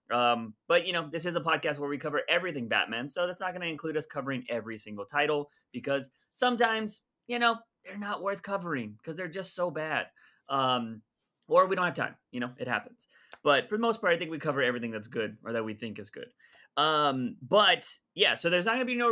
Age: 30-49